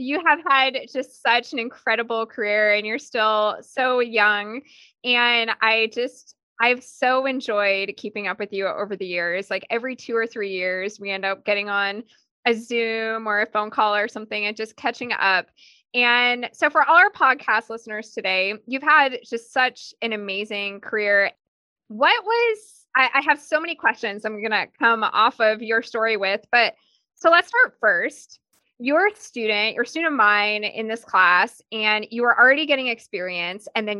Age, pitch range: 20-39, 210-265 Hz